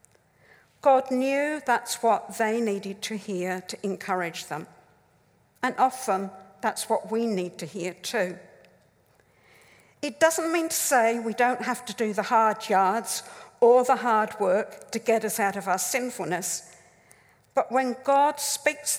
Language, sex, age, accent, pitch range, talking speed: English, female, 60-79, British, 200-255 Hz, 150 wpm